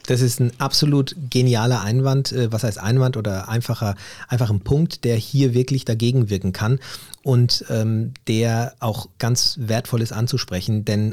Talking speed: 155 wpm